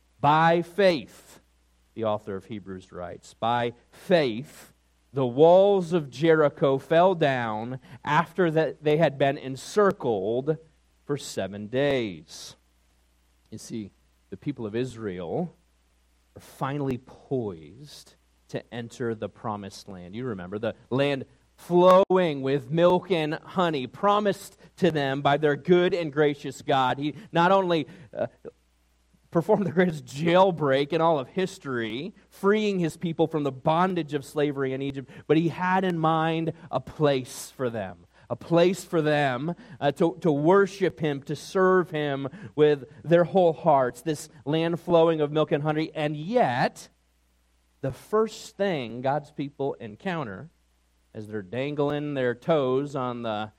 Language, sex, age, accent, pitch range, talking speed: English, male, 40-59, American, 120-165 Hz, 140 wpm